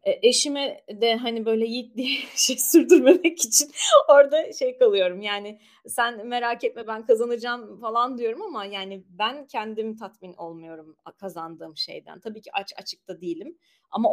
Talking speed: 140 wpm